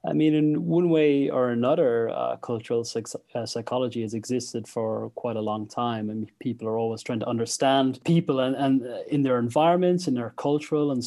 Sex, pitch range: male, 115-130 Hz